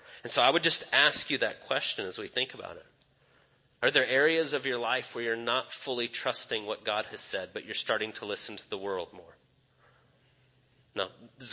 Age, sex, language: 30-49, male, English